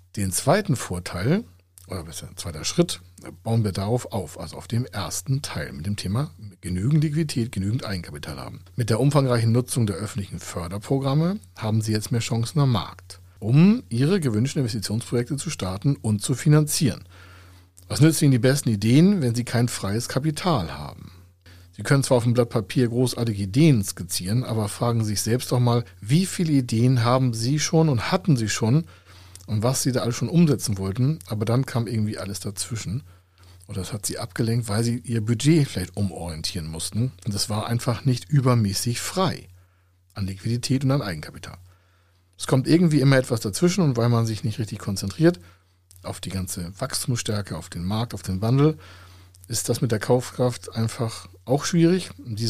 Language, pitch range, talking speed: German, 95-130 Hz, 180 wpm